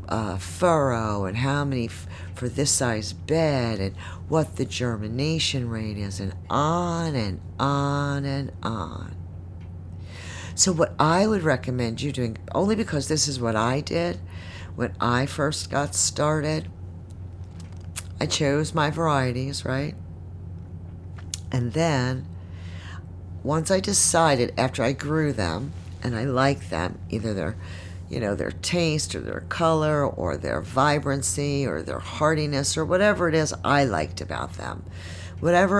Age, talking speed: 50-69, 135 wpm